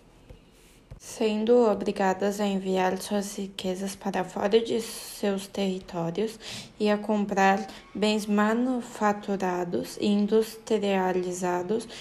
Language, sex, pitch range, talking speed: Portuguese, female, 190-215 Hz, 90 wpm